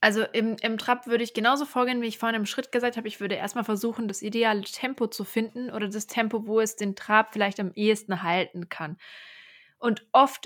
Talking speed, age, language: 220 wpm, 20-39, German